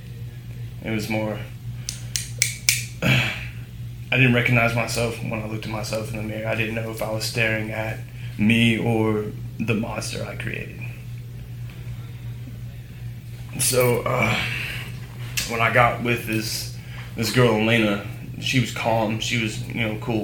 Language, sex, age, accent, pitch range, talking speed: English, male, 20-39, American, 115-120 Hz, 140 wpm